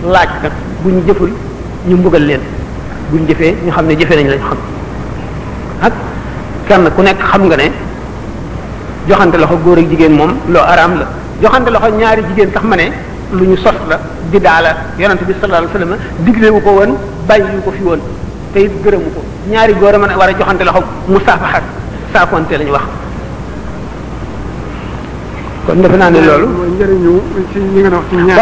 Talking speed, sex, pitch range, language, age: 50 wpm, male, 180-225 Hz, French, 50-69